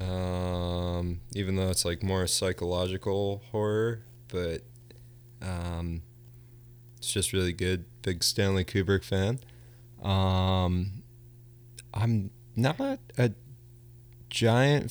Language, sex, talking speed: English, male, 95 wpm